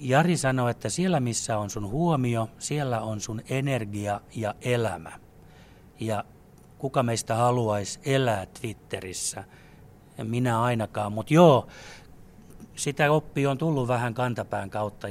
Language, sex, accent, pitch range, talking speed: Finnish, male, native, 105-130 Hz, 125 wpm